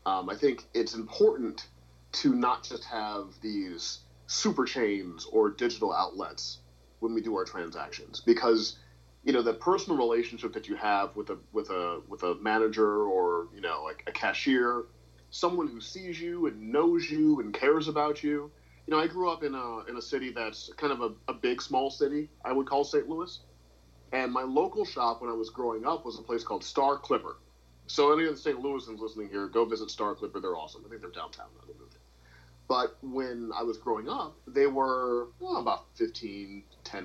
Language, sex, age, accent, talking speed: English, male, 40-59, American, 200 wpm